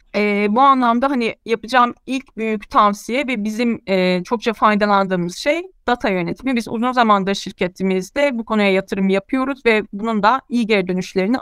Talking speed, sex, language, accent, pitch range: 160 wpm, female, Turkish, native, 200-260 Hz